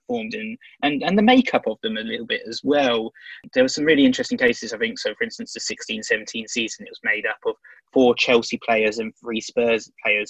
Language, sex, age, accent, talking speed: English, male, 20-39, British, 220 wpm